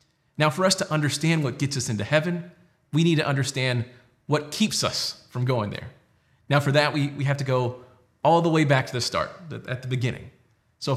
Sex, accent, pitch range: male, American, 125-160 Hz